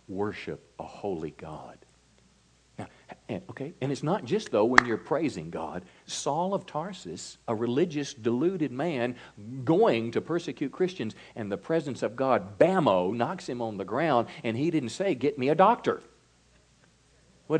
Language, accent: English, American